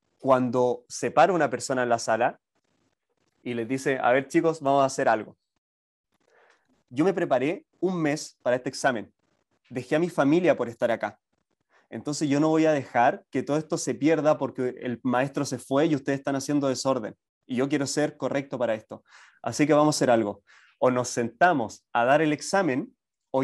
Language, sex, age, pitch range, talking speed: Spanish, male, 20-39, 125-150 Hz, 190 wpm